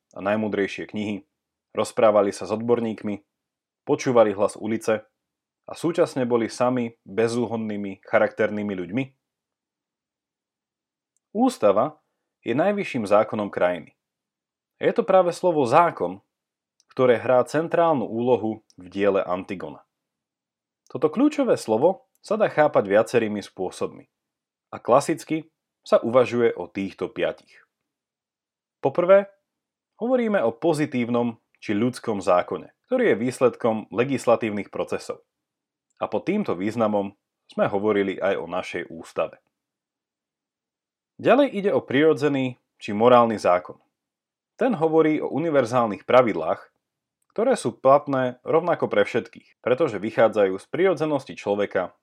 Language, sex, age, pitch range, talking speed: Slovak, male, 30-49, 105-160 Hz, 110 wpm